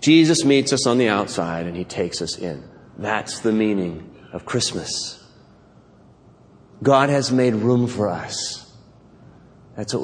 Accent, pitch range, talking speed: American, 115-160 Hz, 145 wpm